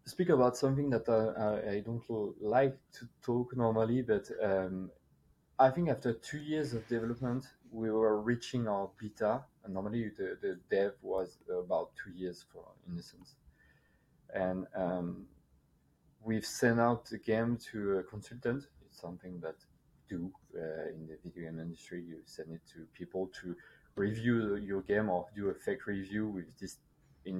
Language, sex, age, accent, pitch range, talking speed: English, male, 30-49, French, 95-120 Hz, 160 wpm